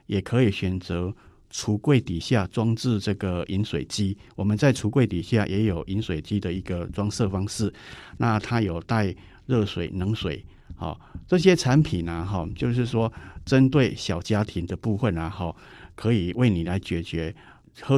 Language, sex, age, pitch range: Chinese, male, 50-69, 90-120 Hz